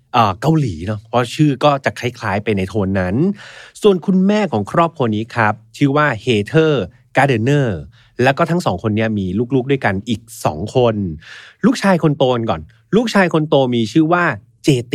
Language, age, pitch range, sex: Thai, 30-49, 115-160 Hz, male